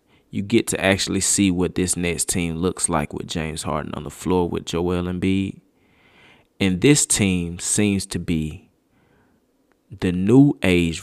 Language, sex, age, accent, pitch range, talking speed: English, male, 20-39, American, 80-100 Hz, 160 wpm